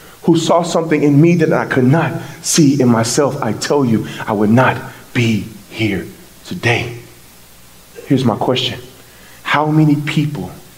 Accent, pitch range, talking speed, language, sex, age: American, 130-220 Hz, 150 wpm, English, male, 30-49